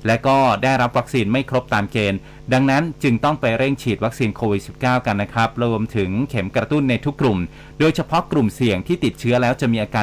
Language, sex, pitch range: Thai, male, 110-140 Hz